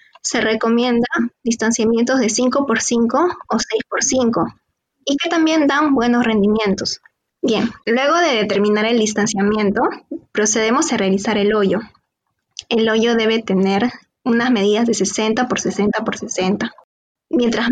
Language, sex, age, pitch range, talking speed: Spanish, female, 20-39, 215-255 Hz, 130 wpm